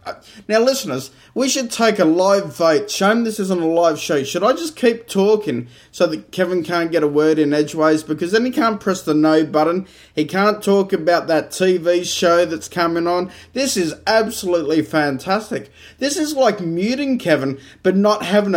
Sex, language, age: male, English, 20-39